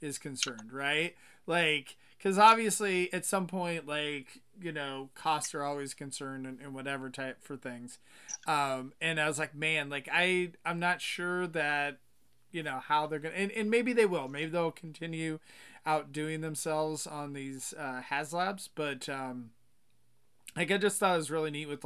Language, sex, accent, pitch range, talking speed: English, male, American, 140-165 Hz, 180 wpm